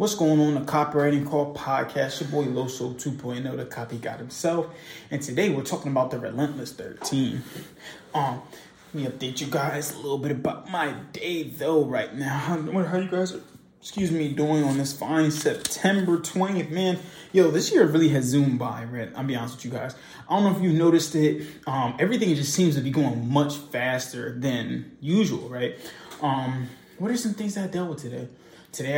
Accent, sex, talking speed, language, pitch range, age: American, male, 205 wpm, English, 135-170 Hz, 20-39